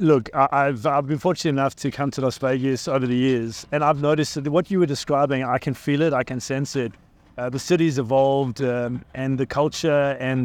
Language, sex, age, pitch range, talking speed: English, male, 30-49, 125-145 Hz, 225 wpm